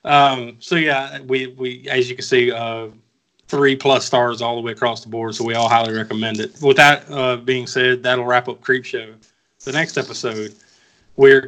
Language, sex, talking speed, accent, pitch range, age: English, male, 205 wpm, American, 115-130 Hz, 30-49